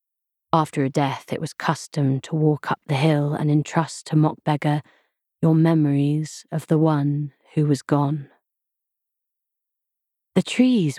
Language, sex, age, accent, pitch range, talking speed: English, female, 30-49, British, 145-180 Hz, 135 wpm